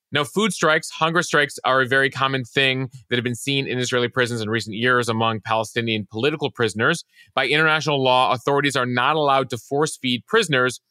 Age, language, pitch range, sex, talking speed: 30-49, English, 115-135 Hz, male, 195 wpm